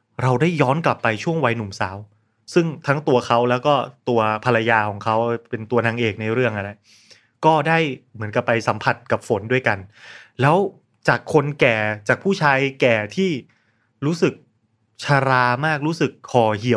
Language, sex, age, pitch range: Thai, male, 20-39, 115-155 Hz